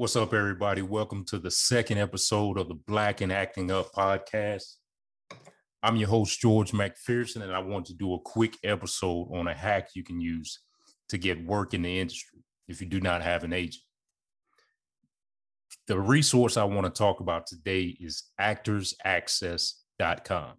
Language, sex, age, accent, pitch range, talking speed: English, male, 30-49, American, 90-110 Hz, 165 wpm